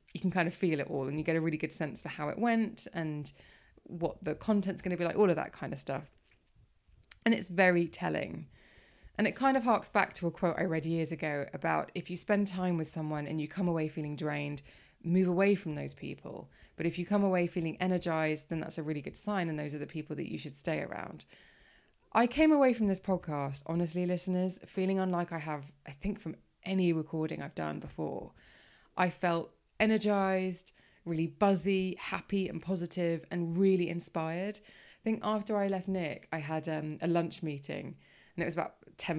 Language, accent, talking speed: English, British, 215 wpm